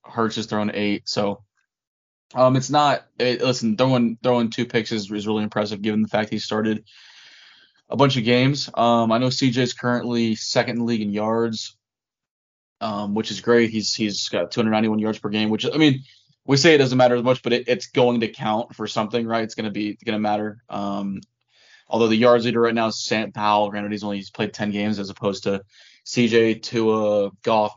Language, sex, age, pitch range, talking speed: English, male, 20-39, 105-120 Hz, 210 wpm